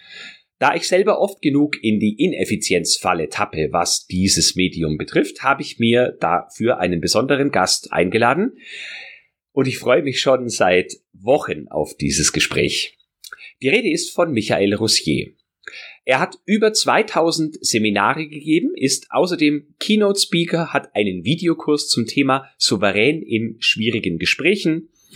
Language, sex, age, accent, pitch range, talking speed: German, male, 30-49, German, 105-165 Hz, 135 wpm